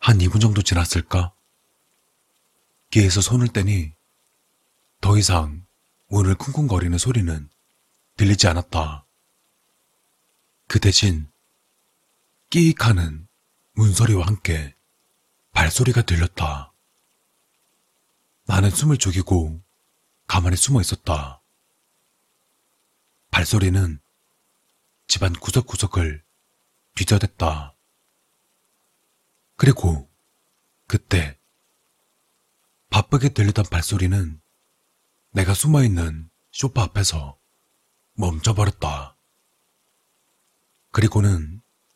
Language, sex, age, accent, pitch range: Korean, male, 40-59, native, 80-110 Hz